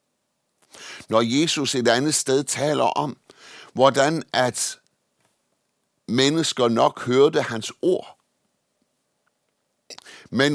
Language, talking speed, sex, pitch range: Danish, 85 wpm, male, 120-160 Hz